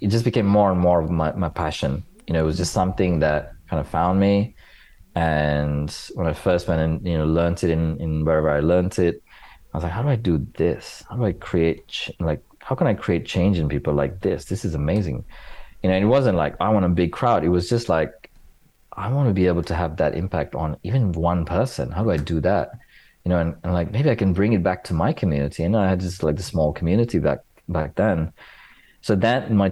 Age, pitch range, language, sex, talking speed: 30-49, 75-90 Hz, English, male, 250 wpm